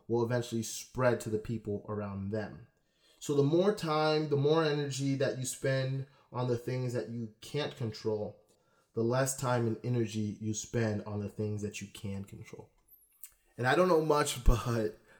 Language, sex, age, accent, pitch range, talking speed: English, male, 20-39, American, 110-125 Hz, 180 wpm